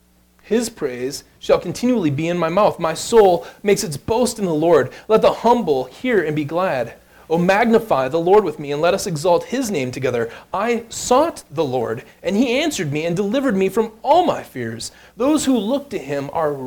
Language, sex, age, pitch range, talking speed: English, male, 30-49, 130-195 Hz, 205 wpm